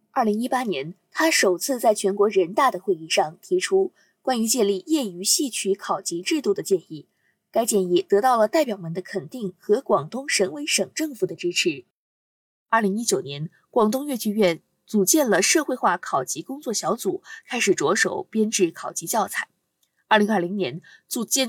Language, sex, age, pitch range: Chinese, female, 20-39, 190-285 Hz